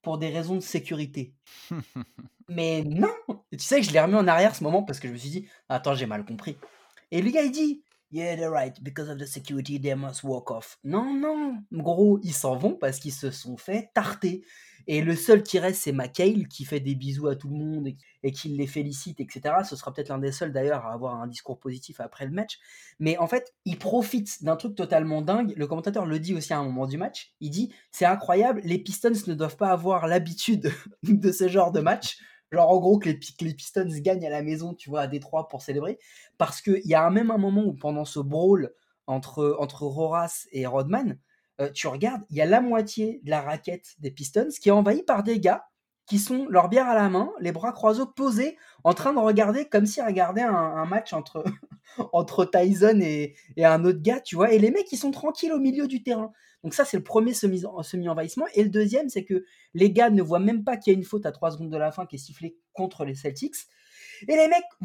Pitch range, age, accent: 150-215 Hz, 20-39, French